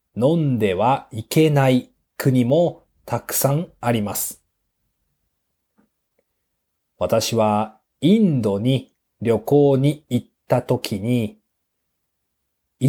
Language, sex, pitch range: Japanese, male, 105-145 Hz